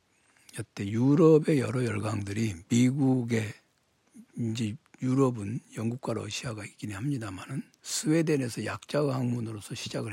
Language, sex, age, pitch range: Korean, male, 60-79, 110-145 Hz